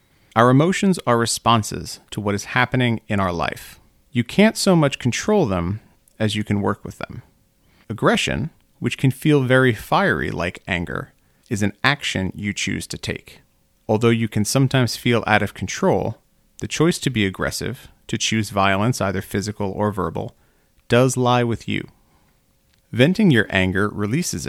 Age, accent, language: 40-59, American, English